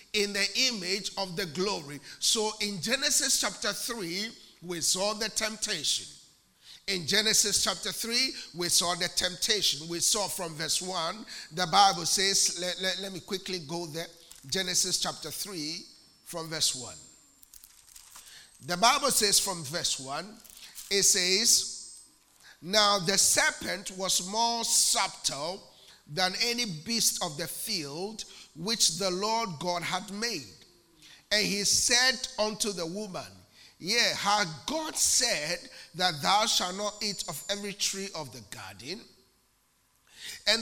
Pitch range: 170-210 Hz